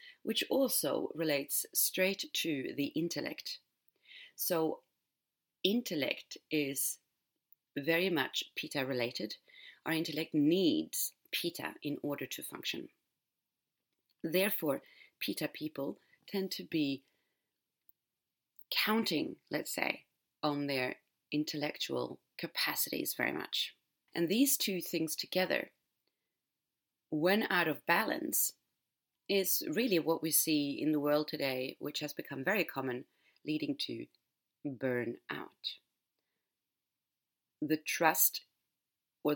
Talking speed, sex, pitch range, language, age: 100 wpm, female, 145-190 Hz, English, 30-49